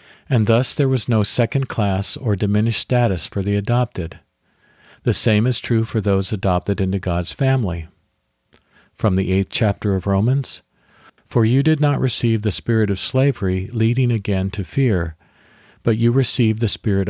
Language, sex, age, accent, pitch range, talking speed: English, male, 50-69, American, 95-120 Hz, 165 wpm